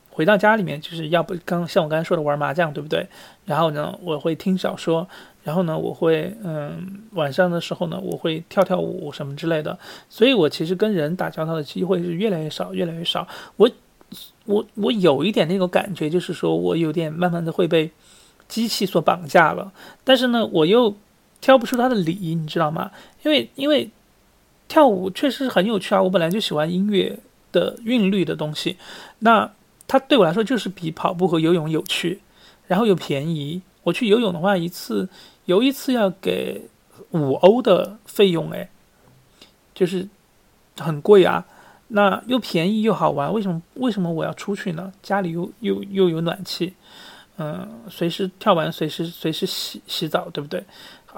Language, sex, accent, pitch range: Chinese, male, native, 165-205 Hz